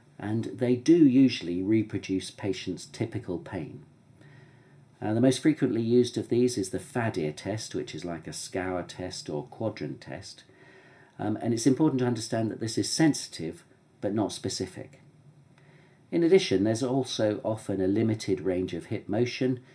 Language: English